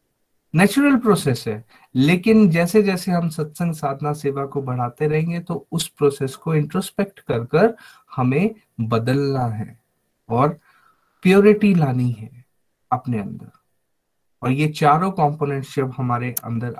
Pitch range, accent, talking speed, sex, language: 130-170 Hz, native, 125 wpm, male, Hindi